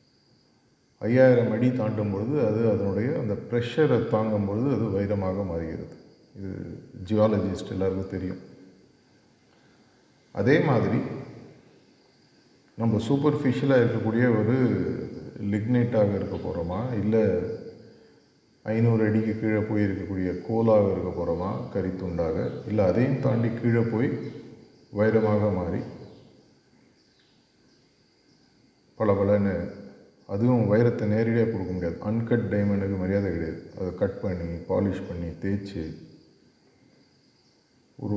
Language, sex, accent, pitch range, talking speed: Tamil, male, native, 95-115 Hz, 95 wpm